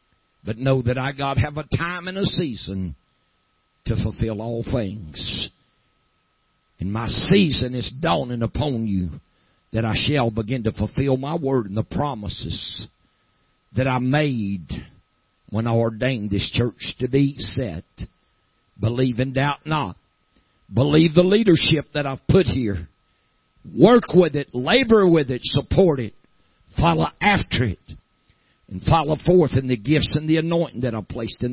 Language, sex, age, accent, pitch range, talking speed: English, male, 60-79, American, 105-145 Hz, 150 wpm